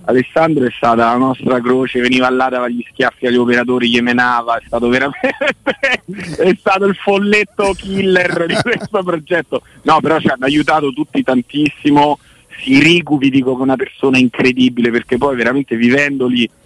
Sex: male